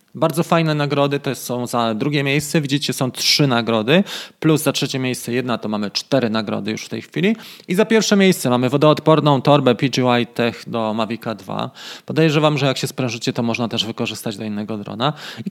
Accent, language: native, Polish